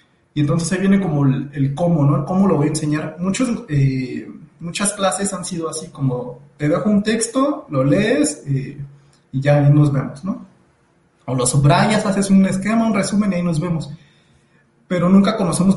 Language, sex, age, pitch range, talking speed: Spanish, male, 30-49, 150-190 Hz, 195 wpm